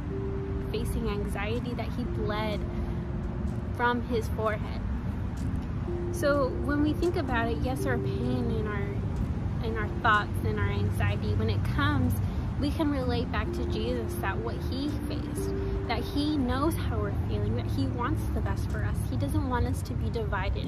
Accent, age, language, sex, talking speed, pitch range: American, 10-29, English, female, 165 wpm, 90-110 Hz